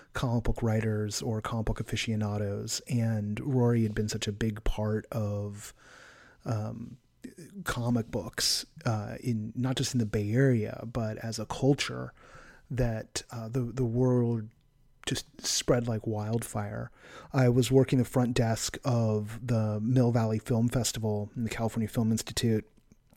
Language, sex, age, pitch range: English, male, 30-49, 110-140 Hz